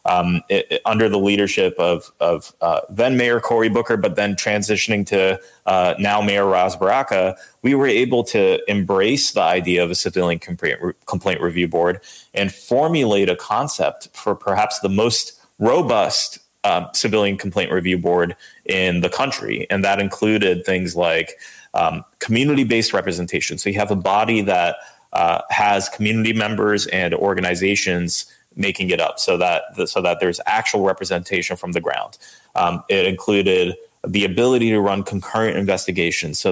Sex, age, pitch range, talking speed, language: male, 30-49, 95-110 Hz, 155 wpm, English